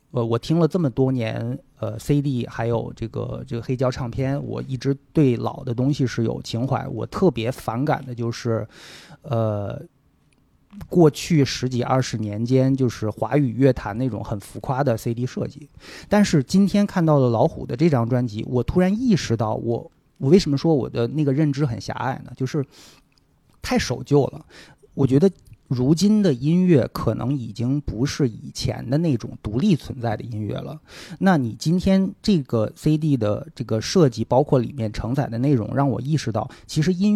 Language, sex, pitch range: Chinese, male, 115-150 Hz